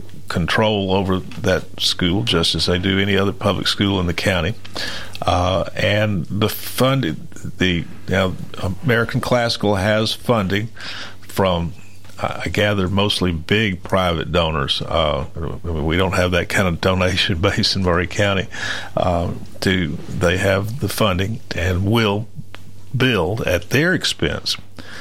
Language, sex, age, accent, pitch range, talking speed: English, male, 50-69, American, 90-105 Hz, 140 wpm